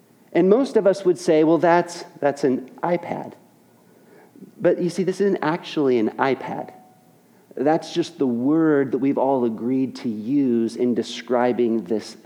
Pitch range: 125-170 Hz